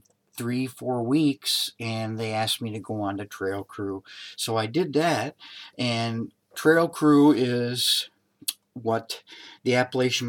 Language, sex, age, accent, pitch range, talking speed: English, male, 50-69, American, 105-125 Hz, 140 wpm